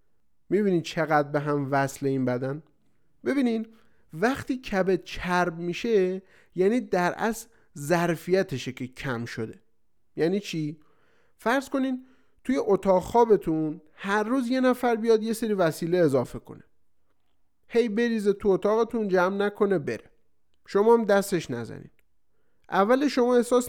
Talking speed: 130 wpm